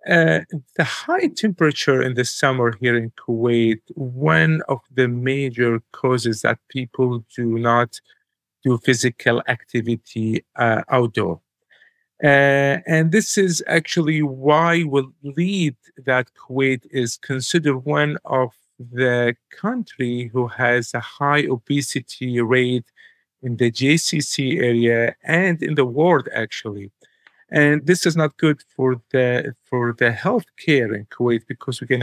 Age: 50-69